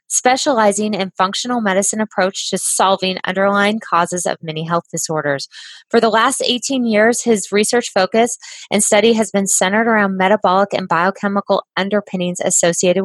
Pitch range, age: 185-220 Hz, 20-39